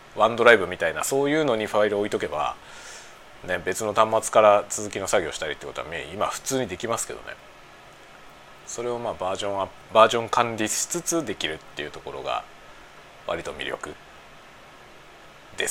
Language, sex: Japanese, male